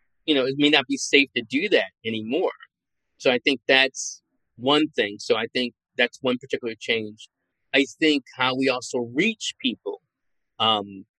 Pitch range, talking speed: 115-145 Hz, 170 wpm